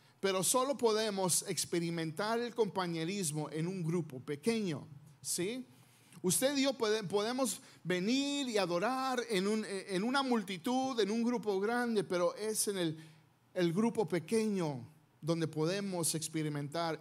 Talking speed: 125 wpm